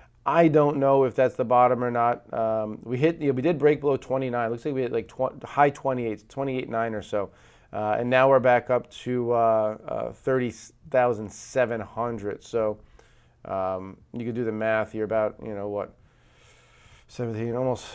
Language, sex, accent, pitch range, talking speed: English, male, American, 115-130 Hz, 200 wpm